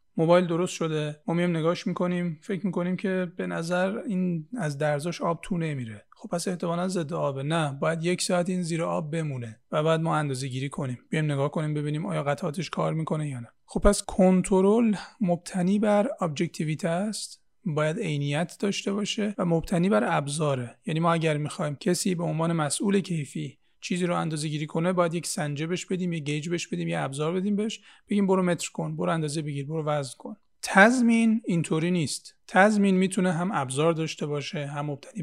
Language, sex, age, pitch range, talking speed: Persian, male, 30-49, 150-185 Hz, 190 wpm